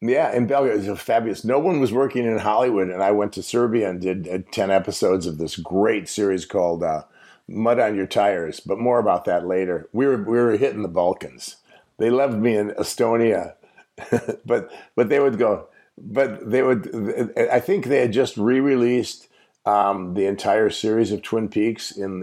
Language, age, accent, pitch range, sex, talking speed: English, 50-69, American, 95-115 Hz, male, 190 wpm